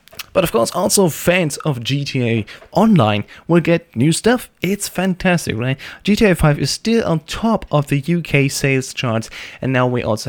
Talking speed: 175 wpm